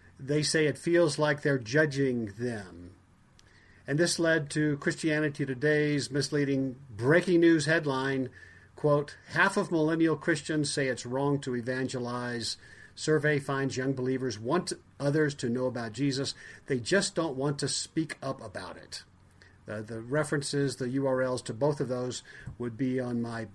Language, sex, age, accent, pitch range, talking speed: English, male, 50-69, American, 125-155 Hz, 155 wpm